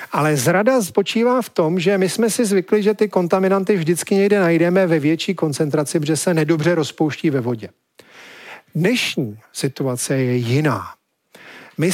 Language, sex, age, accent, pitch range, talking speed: Czech, male, 40-59, native, 150-210 Hz, 150 wpm